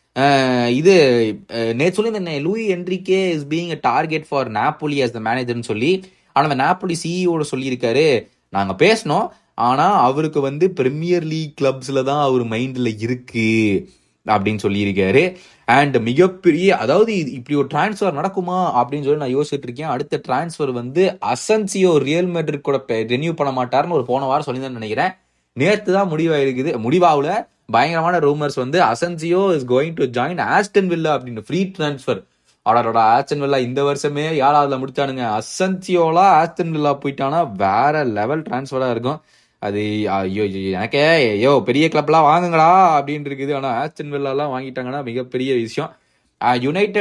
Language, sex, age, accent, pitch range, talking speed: Tamil, male, 20-39, native, 125-170 Hz, 90 wpm